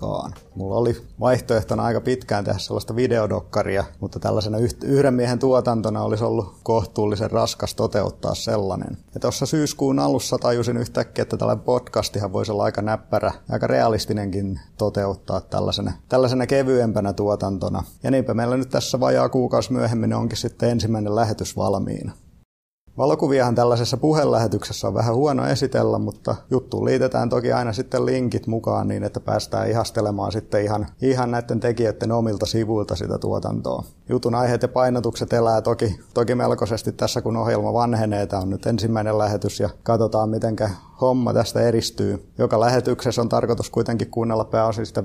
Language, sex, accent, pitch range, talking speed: Finnish, male, native, 105-120 Hz, 145 wpm